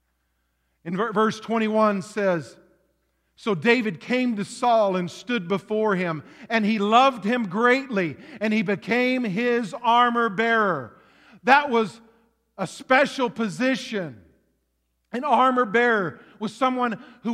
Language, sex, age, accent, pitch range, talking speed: English, male, 50-69, American, 215-280 Hz, 115 wpm